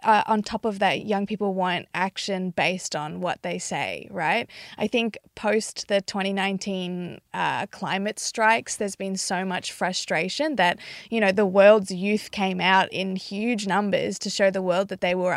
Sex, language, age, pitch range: female, English, 20-39, 185-215 Hz